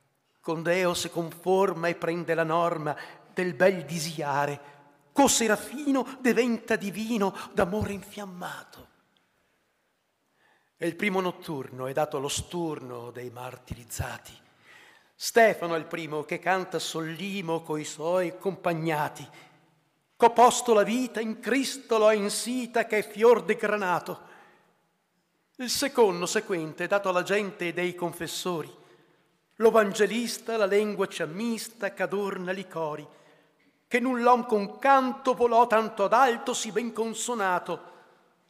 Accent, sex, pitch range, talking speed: native, male, 165-225 Hz, 120 wpm